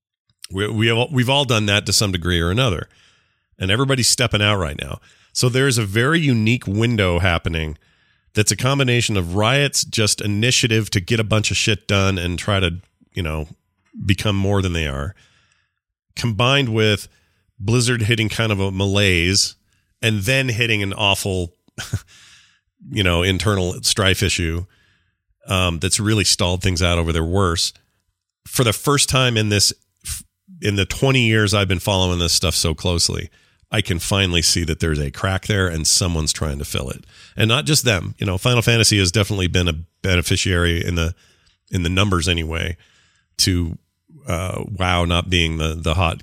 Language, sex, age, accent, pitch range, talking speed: English, male, 40-59, American, 85-105 Hz, 175 wpm